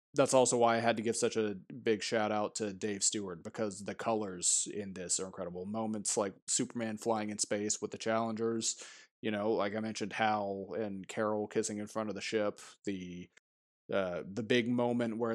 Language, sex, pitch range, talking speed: English, male, 100-115 Hz, 200 wpm